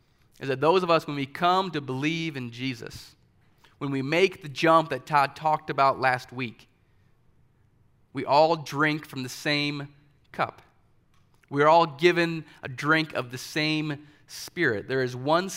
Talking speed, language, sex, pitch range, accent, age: 160 wpm, English, male, 125-150 Hz, American, 30-49